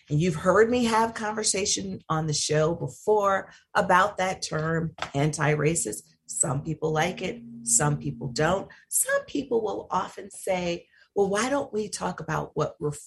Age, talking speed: 40-59, 155 wpm